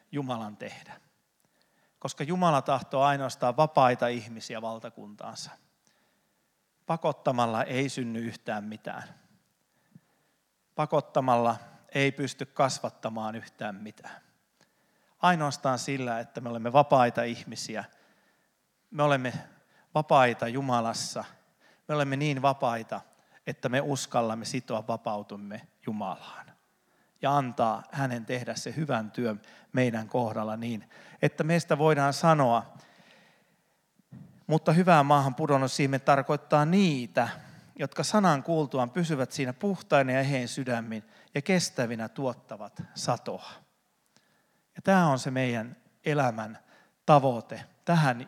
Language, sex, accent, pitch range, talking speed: Finnish, male, native, 120-155 Hz, 100 wpm